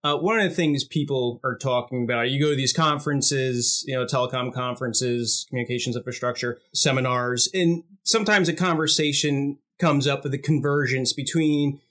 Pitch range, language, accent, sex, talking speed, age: 130-160 Hz, English, American, male, 155 wpm, 30-49